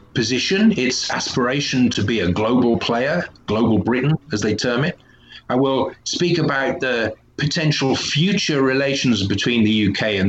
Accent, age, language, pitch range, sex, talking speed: British, 40-59, English, 105-135 Hz, male, 150 wpm